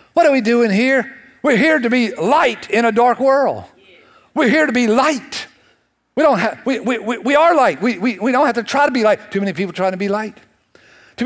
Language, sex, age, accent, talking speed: English, male, 60-79, American, 245 wpm